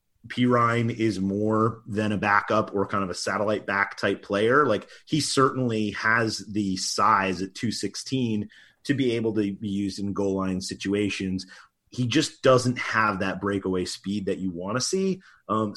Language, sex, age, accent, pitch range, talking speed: English, male, 30-49, American, 95-125 Hz, 175 wpm